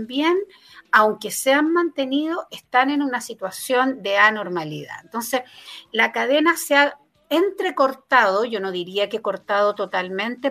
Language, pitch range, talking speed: Romanian, 215-280 Hz, 130 wpm